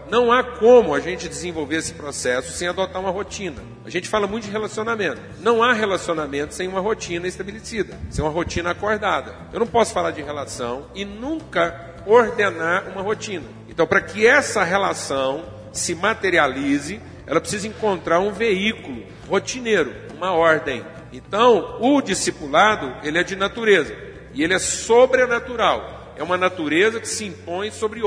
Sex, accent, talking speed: male, Brazilian, 155 wpm